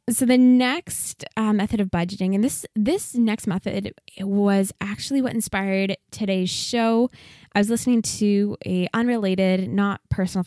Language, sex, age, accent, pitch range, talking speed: English, female, 10-29, American, 180-220 Hz, 155 wpm